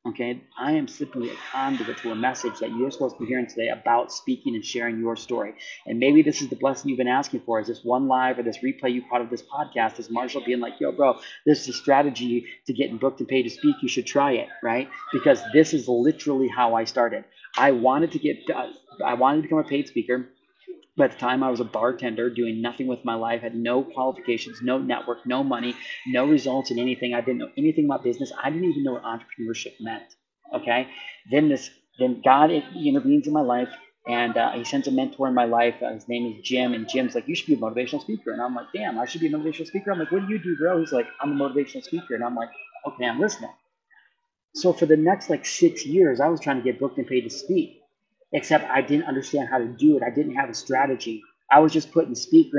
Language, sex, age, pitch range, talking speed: English, male, 30-49, 120-170 Hz, 245 wpm